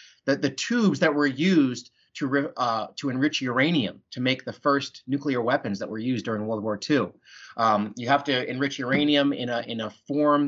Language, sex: English, male